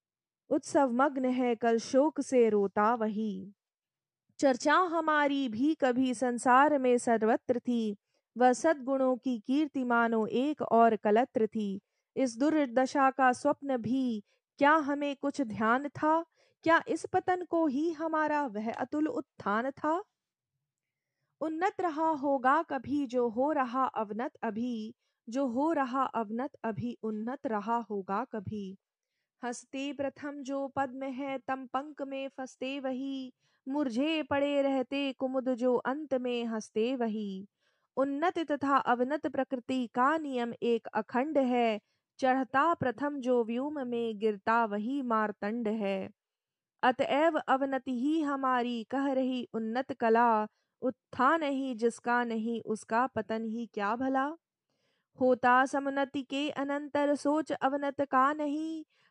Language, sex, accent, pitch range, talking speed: Hindi, female, native, 235-285 Hz, 100 wpm